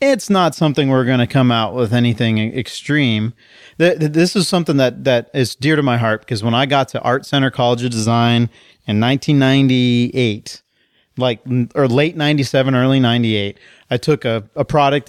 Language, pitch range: English, 120-140 Hz